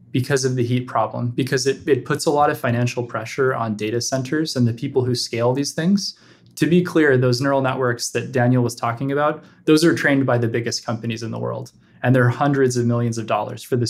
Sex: male